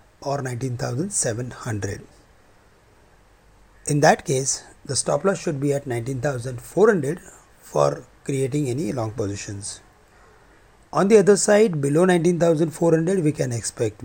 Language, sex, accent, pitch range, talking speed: English, male, Indian, 115-155 Hz, 110 wpm